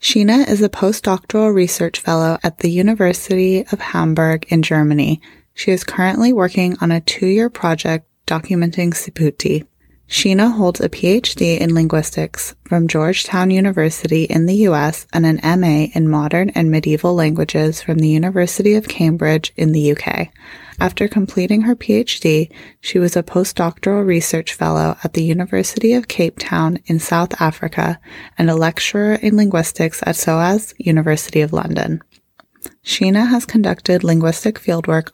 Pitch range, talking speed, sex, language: 160-195 Hz, 145 wpm, female, English